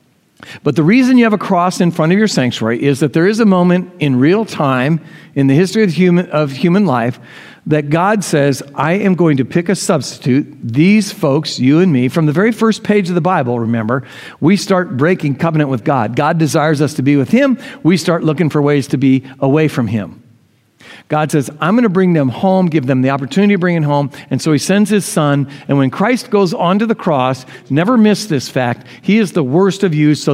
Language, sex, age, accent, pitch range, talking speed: English, male, 60-79, American, 130-185 Hz, 230 wpm